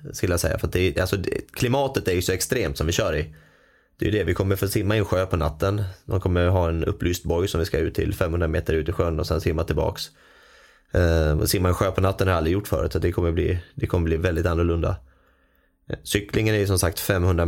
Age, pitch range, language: 20-39, 85-95 Hz, Swedish